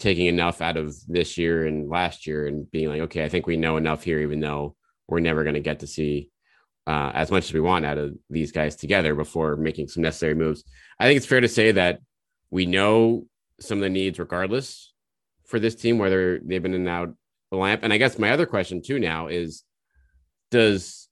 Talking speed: 220 wpm